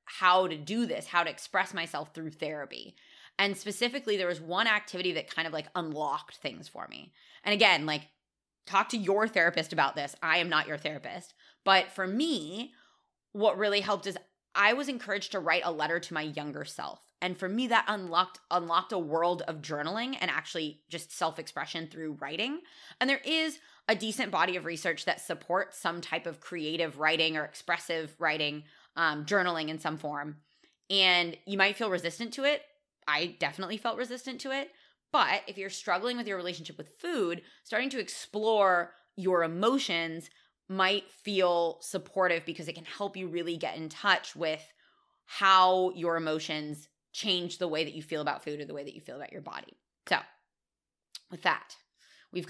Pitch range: 160-205 Hz